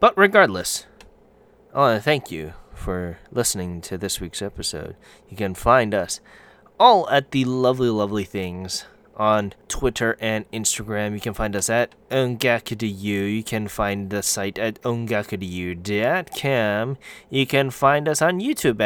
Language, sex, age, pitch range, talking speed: English, male, 20-39, 110-140 Hz, 145 wpm